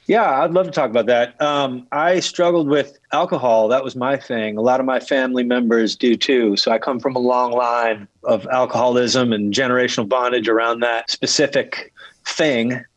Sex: male